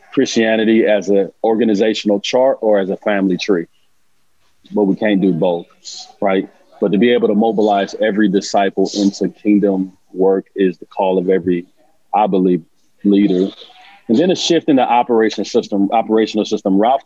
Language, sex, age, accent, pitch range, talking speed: English, male, 30-49, American, 100-120 Hz, 160 wpm